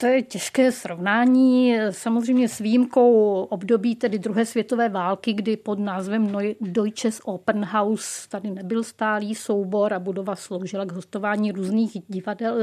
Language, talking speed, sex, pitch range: Czech, 140 wpm, female, 195-230 Hz